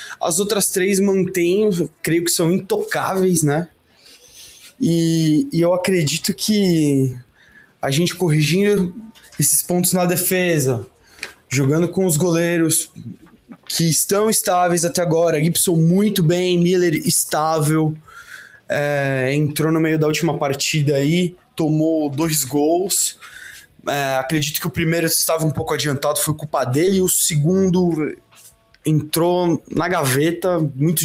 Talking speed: 130 wpm